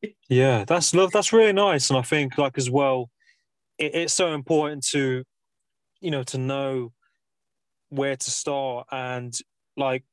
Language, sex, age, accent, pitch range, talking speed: English, male, 20-39, British, 125-140 Hz, 155 wpm